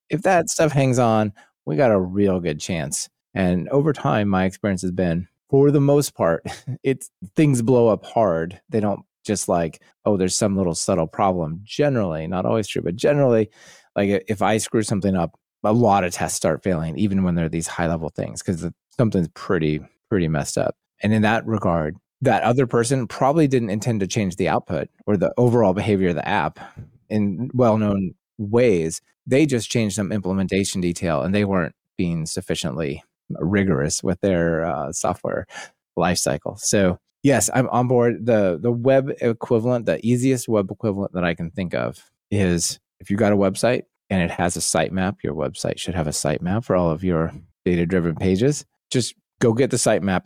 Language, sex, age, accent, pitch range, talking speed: English, male, 30-49, American, 90-120 Hz, 185 wpm